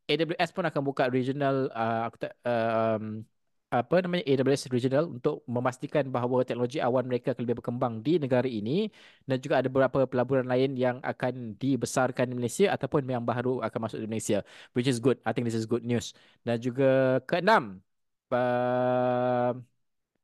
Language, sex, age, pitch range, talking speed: Malay, male, 20-39, 120-150 Hz, 165 wpm